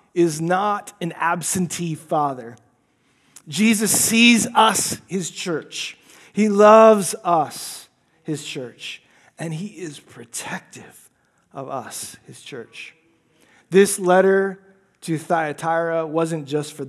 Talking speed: 105 wpm